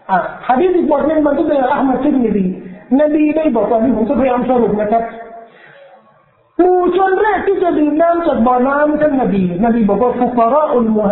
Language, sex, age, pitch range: Thai, male, 40-59, 210-280 Hz